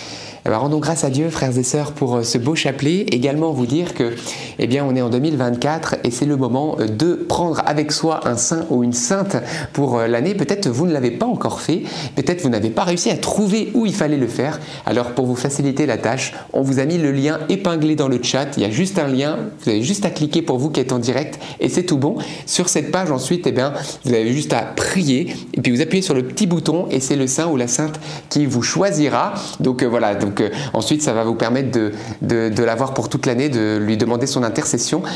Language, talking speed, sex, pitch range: French, 255 wpm, male, 125-160 Hz